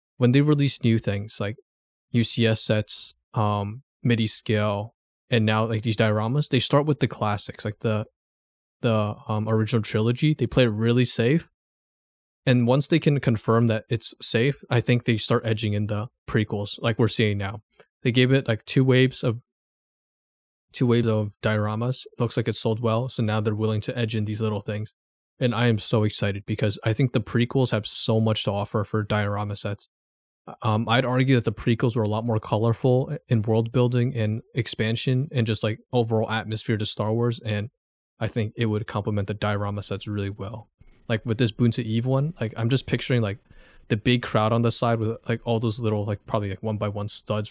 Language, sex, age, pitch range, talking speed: English, male, 20-39, 105-120 Hz, 205 wpm